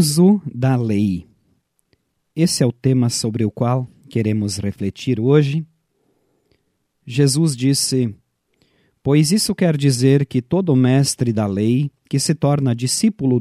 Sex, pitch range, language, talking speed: male, 120-150 Hz, Portuguese, 120 wpm